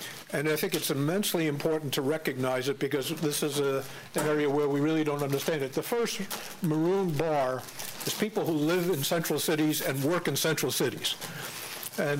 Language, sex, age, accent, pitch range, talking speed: English, male, 60-79, American, 140-160 Hz, 180 wpm